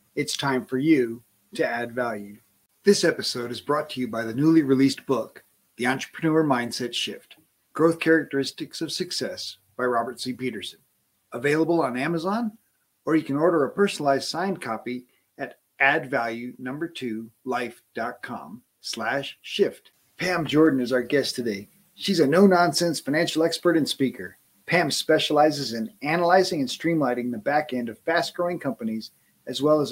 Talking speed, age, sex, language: 145 wpm, 40-59, male, English